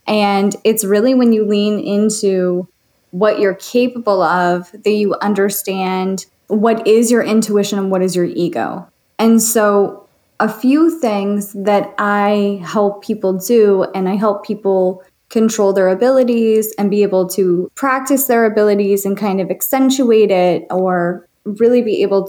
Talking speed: 150 wpm